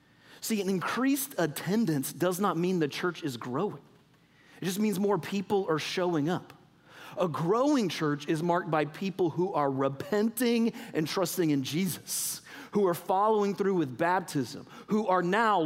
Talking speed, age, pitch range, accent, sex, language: 160 wpm, 40-59, 150-195 Hz, American, male, English